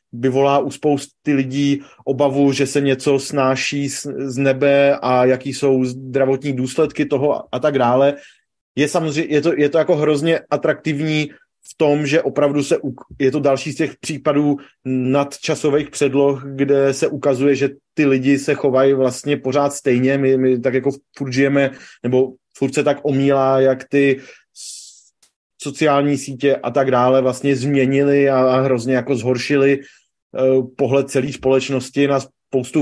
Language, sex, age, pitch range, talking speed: Czech, male, 30-49, 135-150 Hz, 150 wpm